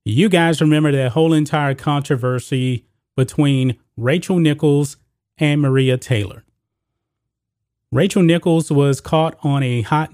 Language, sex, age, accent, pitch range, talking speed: English, male, 30-49, American, 125-155 Hz, 120 wpm